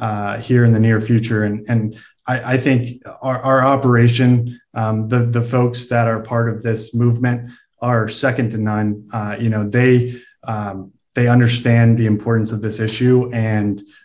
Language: English